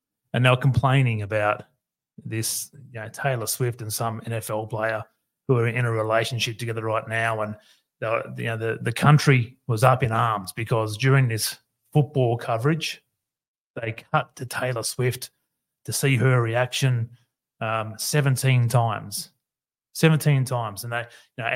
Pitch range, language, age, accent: 115-140 Hz, English, 30-49, Australian